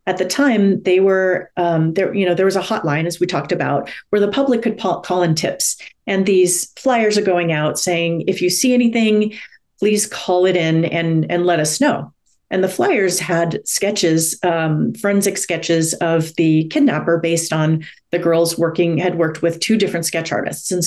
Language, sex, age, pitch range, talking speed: English, female, 40-59, 165-200 Hz, 200 wpm